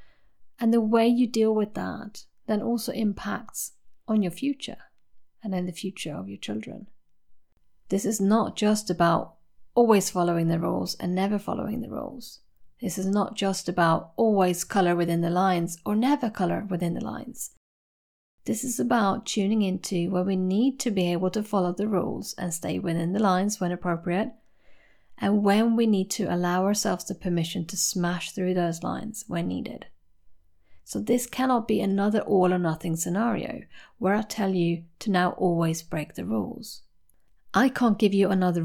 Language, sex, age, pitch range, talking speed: English, female, 30-49, 175-225 Hz, 175 wpm